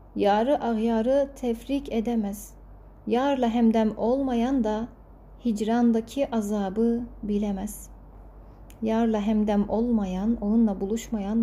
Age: 30-49